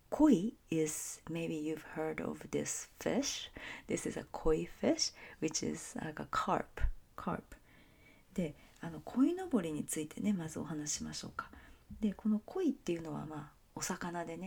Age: 40-59